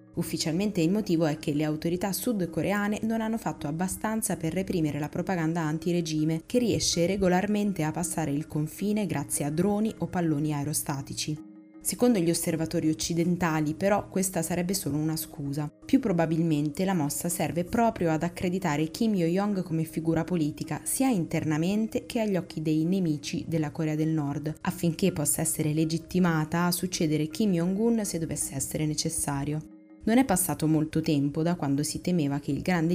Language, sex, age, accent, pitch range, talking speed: Italian, female, 20-39, native, 150-180 Hz, 160 wpm